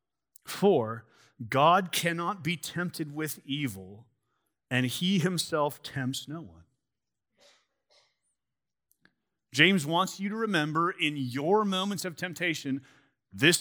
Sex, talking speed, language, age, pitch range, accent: male, 105 wpm, English, 40-59, 135-190 Hz, American